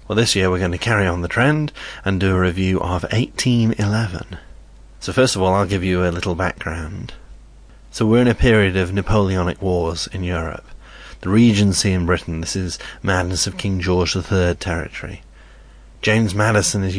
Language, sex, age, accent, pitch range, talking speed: English, male, 30-49, British, 85-105 Hz, 180 wpm